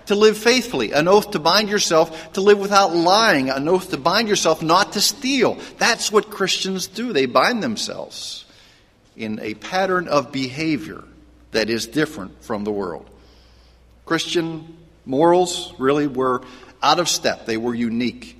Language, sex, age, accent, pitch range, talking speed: English, male, 50-69, American, 115-175 Hz, 155 wpm